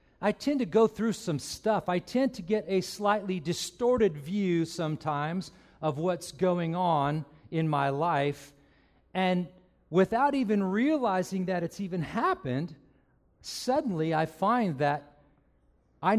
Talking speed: 135 wpm